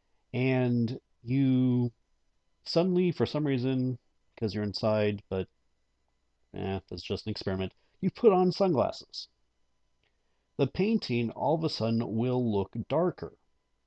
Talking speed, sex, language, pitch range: 120 wpm, male, English, 95-130 Hz